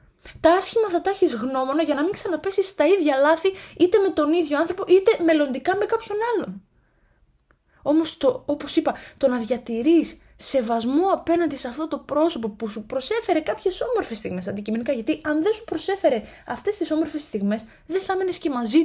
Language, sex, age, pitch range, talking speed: Greek, female, 20-39, 215-320 Hz, 180 wpm